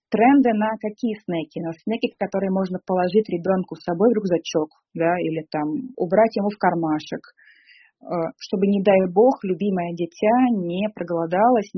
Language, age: Russian, 20-39